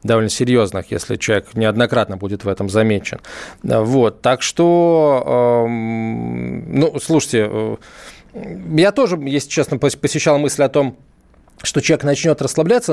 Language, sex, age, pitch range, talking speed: Russian, male, 20-39, 130-170 Hz, 125 wpm